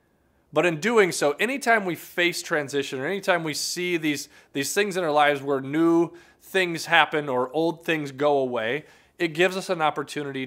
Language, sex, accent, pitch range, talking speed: English, male, American, 140-180 Hz, 185 wpm